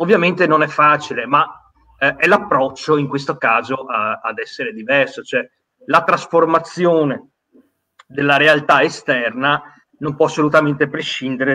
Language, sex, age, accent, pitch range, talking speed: Italian, male, 30-49, native, 130-170 Hz, 120 wpm